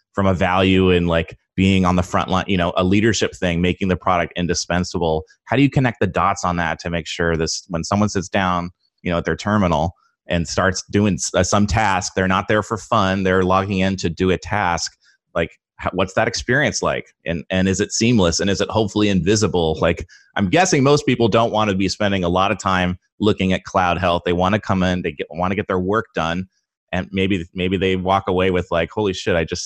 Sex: male